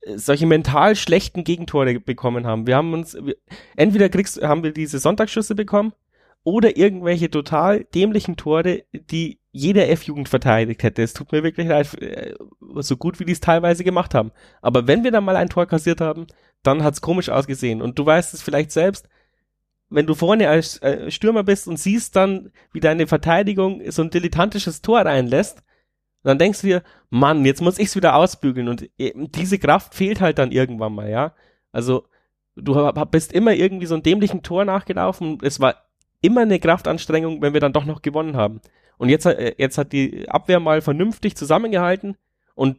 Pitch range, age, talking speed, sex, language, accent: 140-180 Hz, 30-49, 180 wpm, male, German, German